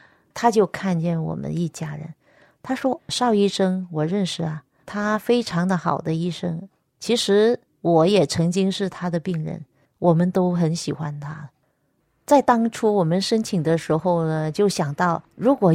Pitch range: 160-200 Hz